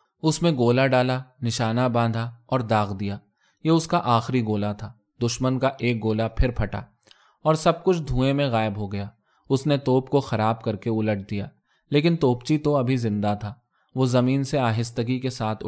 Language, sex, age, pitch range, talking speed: Urdu, male, 20-39, 110-140 Hz, 190 wpm